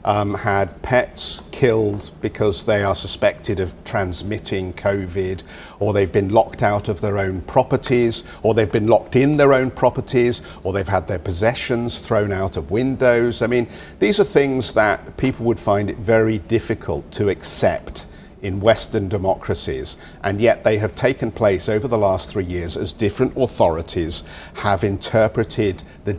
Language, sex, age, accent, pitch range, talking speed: English, male, 50-69, British, 95-120 Hz, 165 wpm